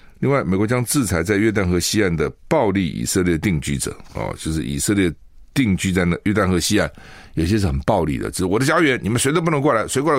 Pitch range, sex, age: 80-110 Hz, male, 60-79